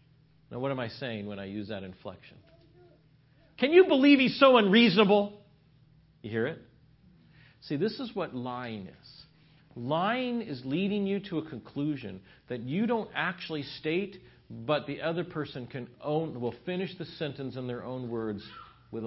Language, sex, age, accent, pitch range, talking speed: English, male, 50-69, American, 120-165 Hz, 165 wpm